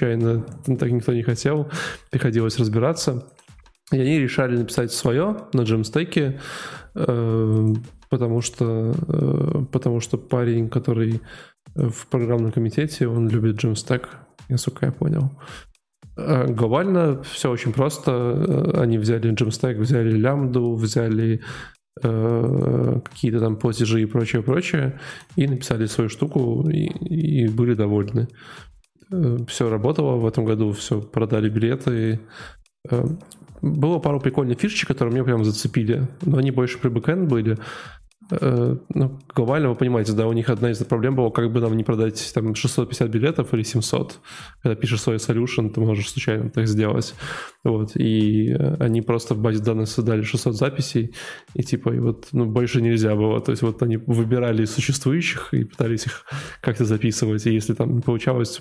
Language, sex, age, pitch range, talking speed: Russian, male, 20-39, 115-135 Hz, 140 wpm